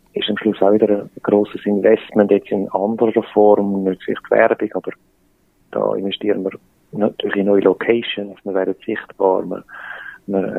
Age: 40-59